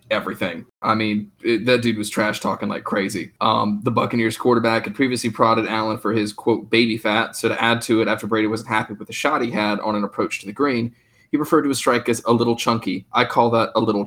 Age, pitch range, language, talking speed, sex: 20-39, 110-115 Hz, English, 245 wpm, male